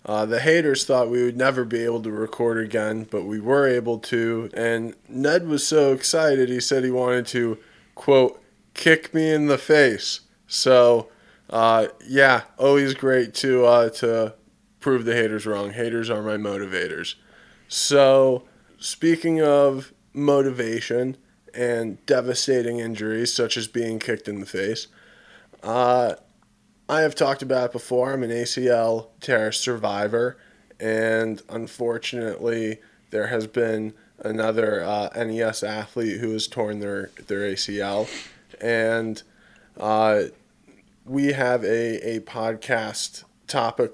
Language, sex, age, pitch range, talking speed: English, male, 20-39, 110-130 Hz, 135 wpm